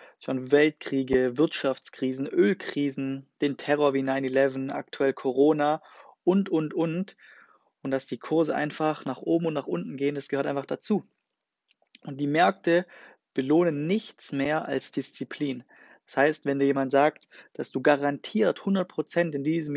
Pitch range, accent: 135-165 Hz, German